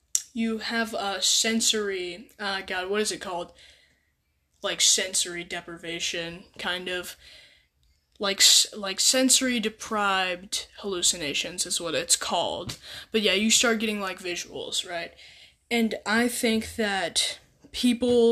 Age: 10-29